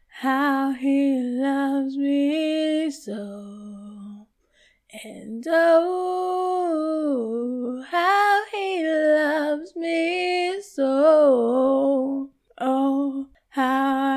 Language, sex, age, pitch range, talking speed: English, female, 10-29, 265-310 Hz, 60 wpm